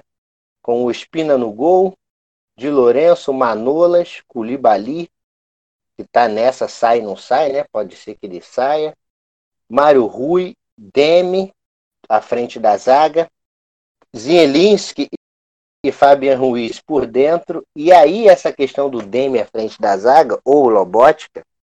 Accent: Brazilian